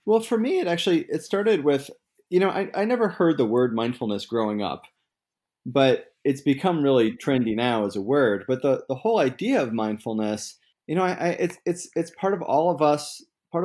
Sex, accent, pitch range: male, American, 125-150 Hz